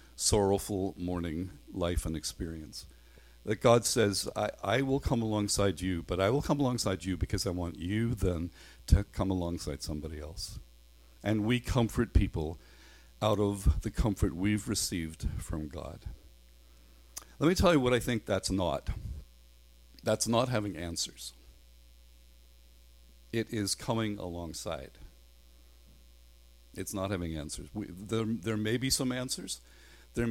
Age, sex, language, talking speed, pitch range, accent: 50-69, male, English, 140 wpm, 65-105 Hz, American